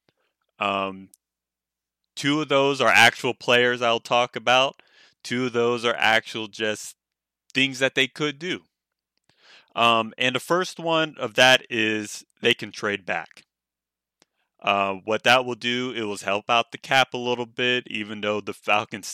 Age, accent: 20-39, American